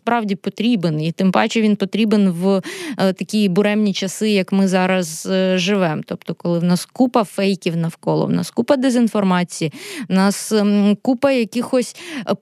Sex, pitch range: female, 185-225 Hz